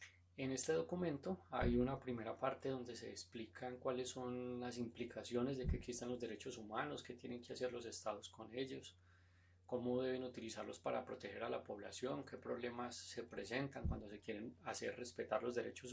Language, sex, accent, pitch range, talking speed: Spanish, male, Colombian, 105-135 Hz, 175 wpm